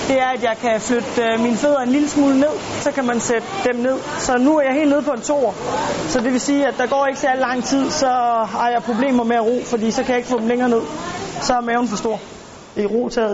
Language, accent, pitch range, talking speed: Danish, native, 195-230 Hz, 275 wpm